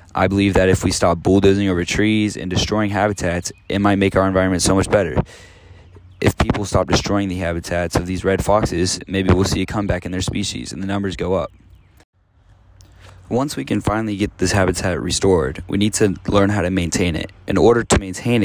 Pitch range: 90-100 Hz